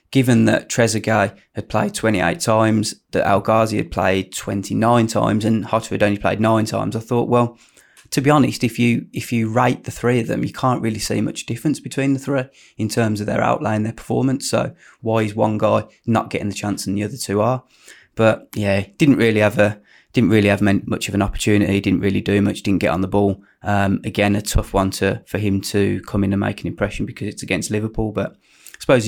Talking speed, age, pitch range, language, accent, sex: 225 wpm, 20-39, 105-120 Hz, English, British, male